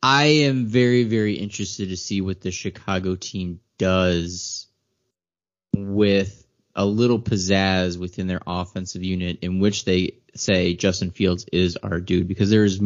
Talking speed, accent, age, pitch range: 145 wpm, American, 20-39, 95-115 Hz